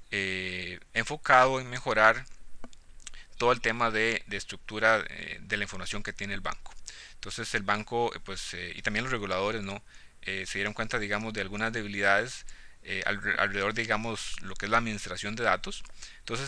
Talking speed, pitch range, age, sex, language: 180 wpm, 100-120 Hz, 30-49, male, Spanish